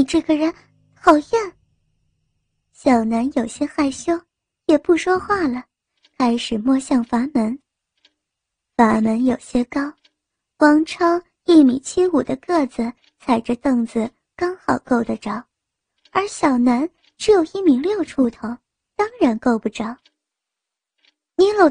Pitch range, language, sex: 250-335 Hz, Chinese, male